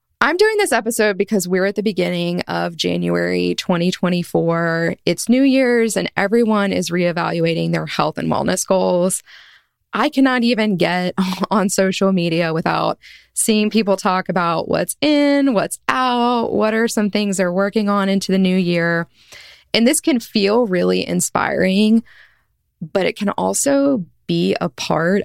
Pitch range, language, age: 175-230 Hz, English, 20-39